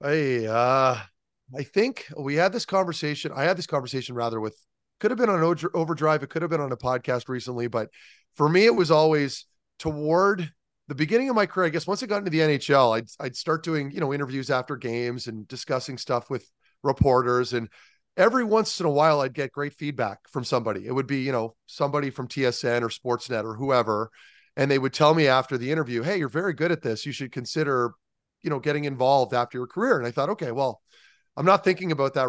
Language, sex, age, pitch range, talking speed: English, male, 30-49, 125-155 Hz, 220 wpm